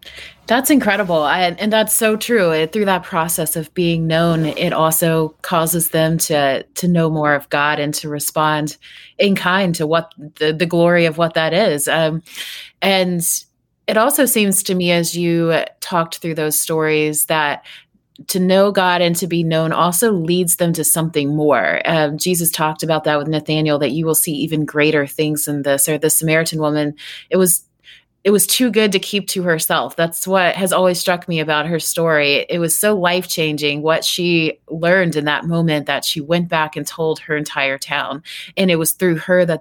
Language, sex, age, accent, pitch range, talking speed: English, female, 30-49, American, 150-175 Hz, 195 wpm